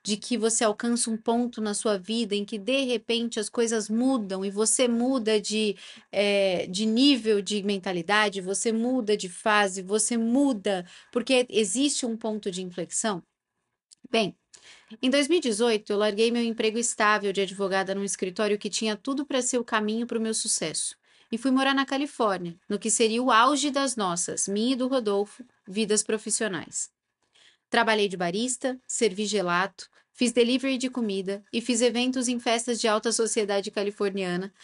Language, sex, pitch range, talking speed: Portuguese, female, 205-245 Hz, 165 wpm